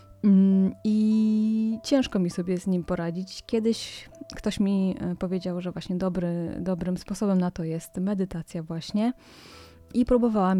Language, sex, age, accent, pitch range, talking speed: Polish, female, 30-49, native, 175-210 Hz, 130 wpm